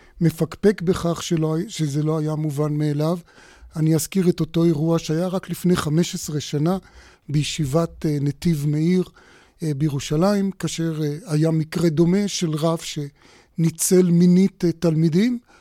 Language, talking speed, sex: Hebrew, 120 wpm, male